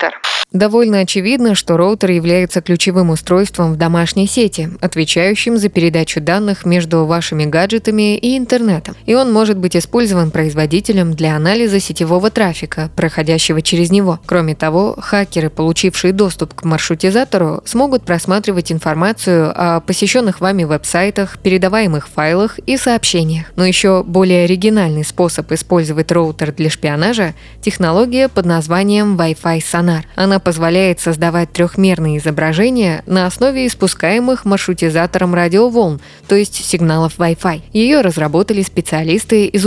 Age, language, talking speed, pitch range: 20-39, Russian, 125 wpm, 165-200 Hz